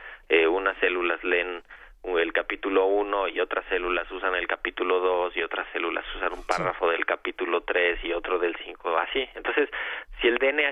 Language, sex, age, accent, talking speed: Spanish, male, 40-59, Mexican, 185 wpm